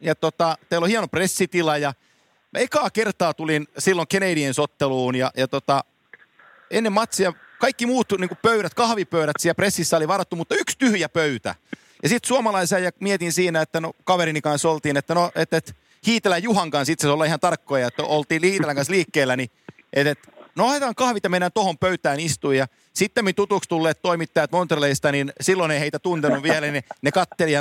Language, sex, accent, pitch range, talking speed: Finnish, male, native, 150-190 Hz, 175 wpm